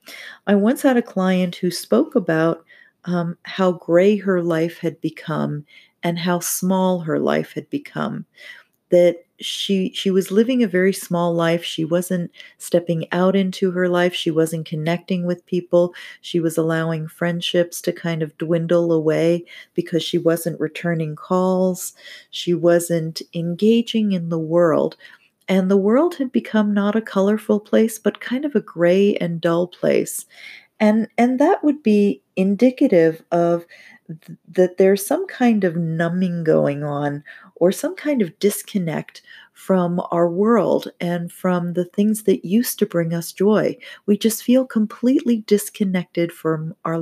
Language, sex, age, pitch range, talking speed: English, female, 40-59, 170-210 Hz, 155 wpm